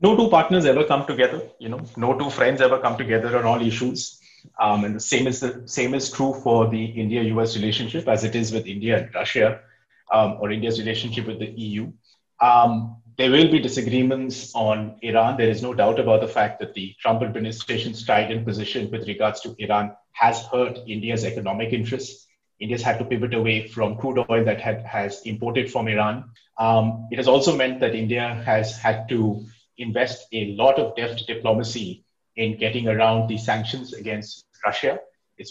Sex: male